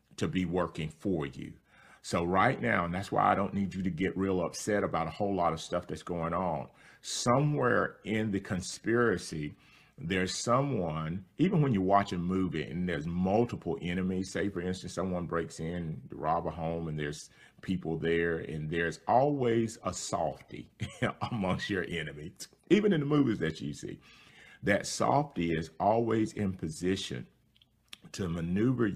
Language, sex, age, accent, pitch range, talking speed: English, male, 40-59, American, 80-95 Hz, 170 wpm